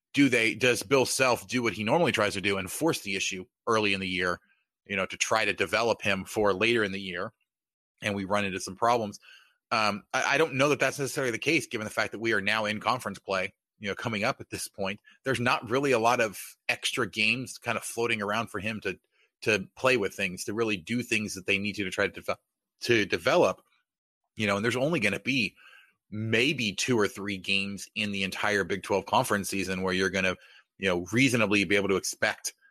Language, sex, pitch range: English, male, 95-115 Hz